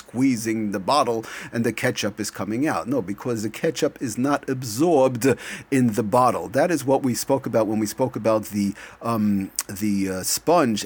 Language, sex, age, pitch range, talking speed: English, male, 40-59, 105-135 Hz, 190 wpm